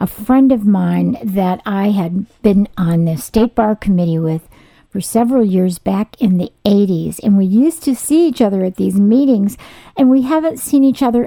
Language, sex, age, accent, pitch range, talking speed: English, female, 50-69, American, 185-245 Hz, 195 wpm